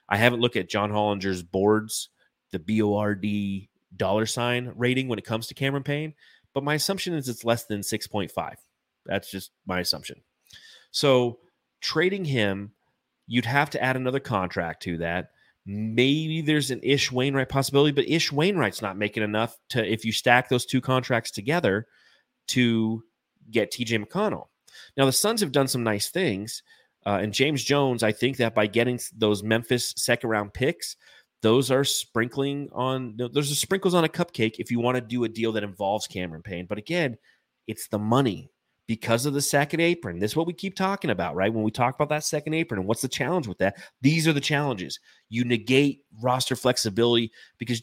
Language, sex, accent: English, male, American